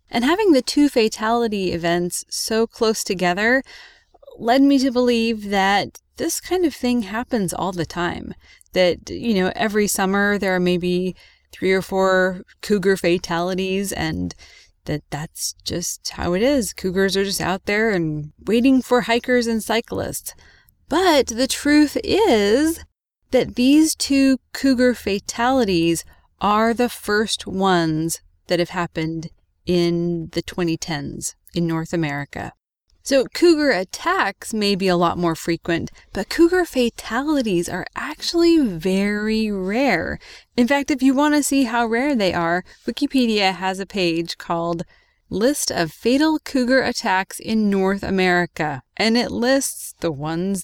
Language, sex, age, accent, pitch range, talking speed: English, female, 20-39, American, 175-250 Hz, 140 wpm